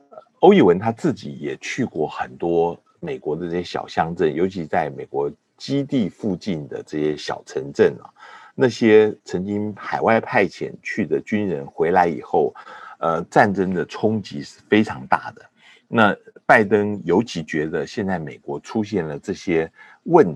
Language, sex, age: Chinese, male, 50-69